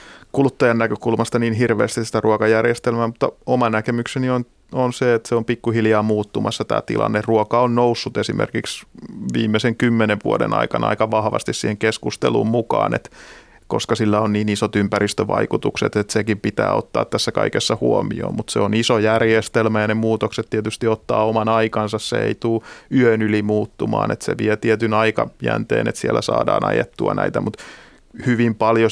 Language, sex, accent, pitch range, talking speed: Finnish, male, native, 105-115 Hz, 160 wpm